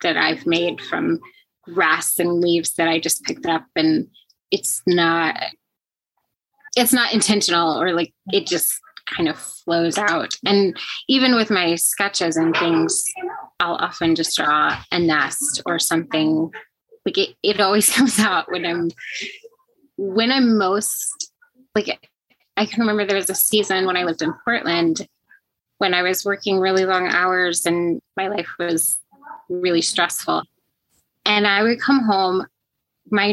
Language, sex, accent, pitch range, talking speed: English, female, American, 175-255 Hz, 150 wpm